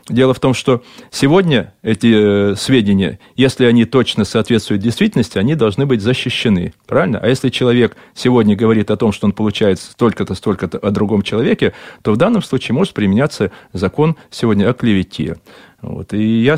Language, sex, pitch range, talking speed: Russian, male, 105-145 Hz, 160 wpm